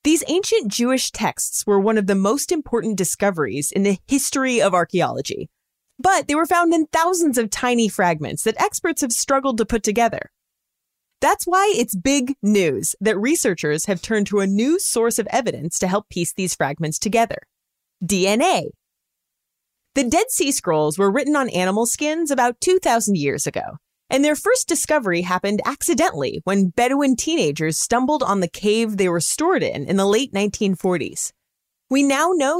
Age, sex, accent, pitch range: 30-49, female, American, 195-300 Hz